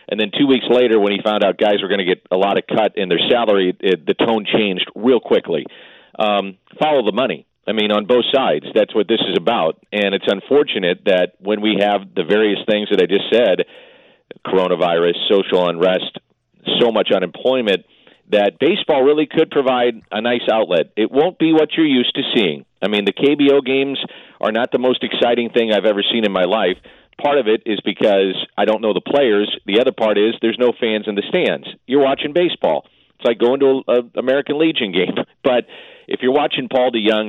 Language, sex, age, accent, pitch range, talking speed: English, male, 40-59, American, 105-125 Hz, 210 wpm